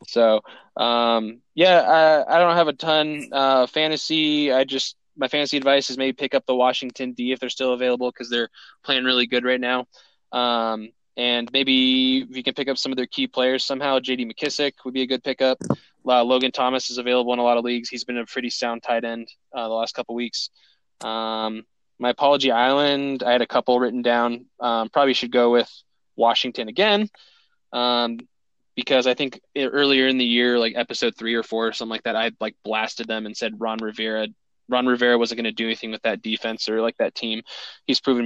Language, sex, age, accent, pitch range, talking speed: English, male, 20-39, American, 120-135 Hz, 210 wpm